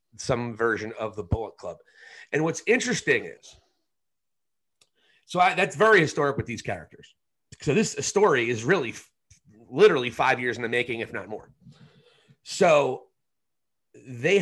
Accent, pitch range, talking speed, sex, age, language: American, 130-195 Hz, 135 wpm, male, 30-49, English